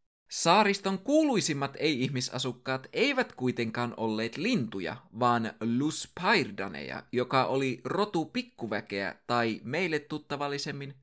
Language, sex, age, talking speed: Finnish, male, 20-39, 85 wpm